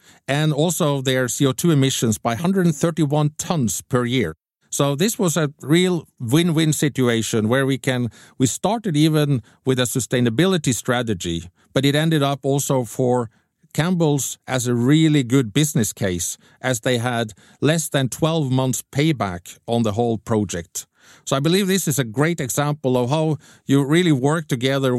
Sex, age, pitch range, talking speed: male, 50-69, 120-150 Hz, 175 wpm